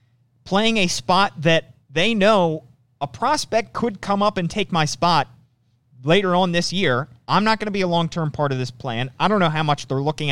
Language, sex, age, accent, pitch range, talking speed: English, male, 30-49, American, 125-180 Hz, 215 wpm